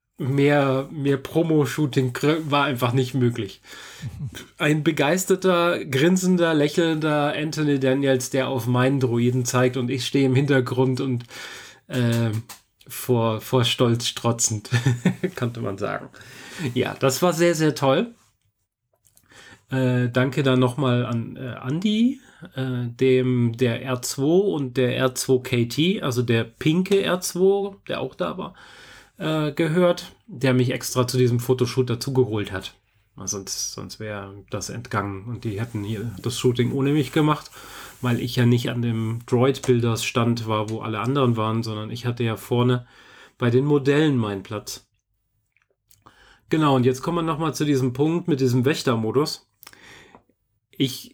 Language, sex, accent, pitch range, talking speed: German, male, German, 120-145 Hz, 140 wpm